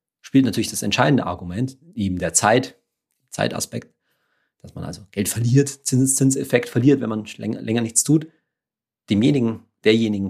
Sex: male